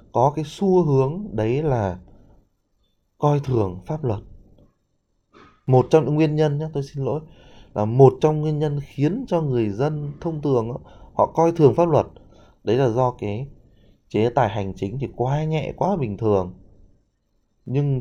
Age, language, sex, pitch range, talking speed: 20-39, Vietnamese, male, 100-140 Hz, 165 wpm